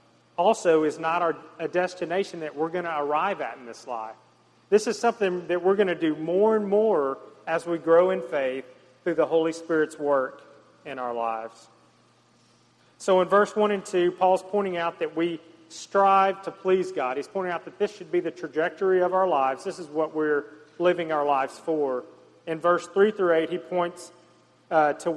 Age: 40-59